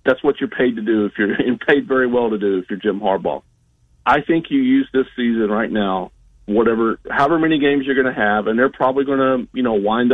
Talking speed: 250 wpm